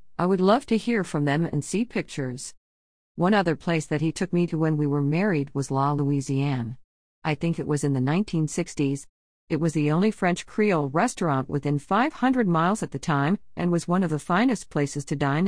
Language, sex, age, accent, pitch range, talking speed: English, female, 50-69, American, 140-185 Hz, 210 wpm